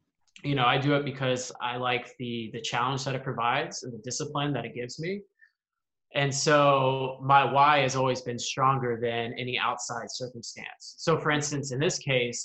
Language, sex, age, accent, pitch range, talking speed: English, male, 20-39, American, 120-145 Hz, 190 wpm